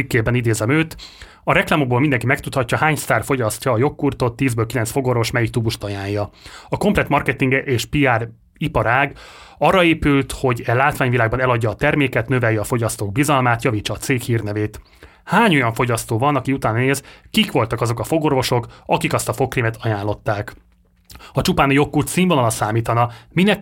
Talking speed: 160 wpm